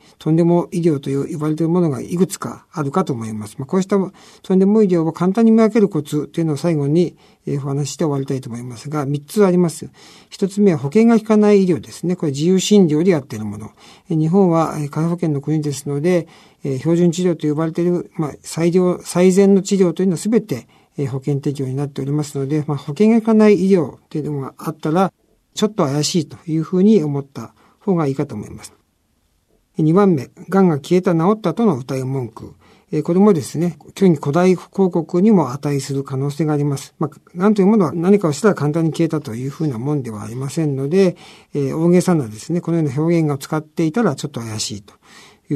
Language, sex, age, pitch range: Japanese, male, 50-69, 140-190 Hz